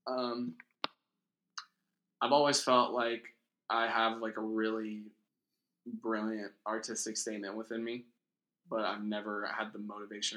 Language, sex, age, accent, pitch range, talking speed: English, male, 20-39, American, 100-110 Hz, 120 wpm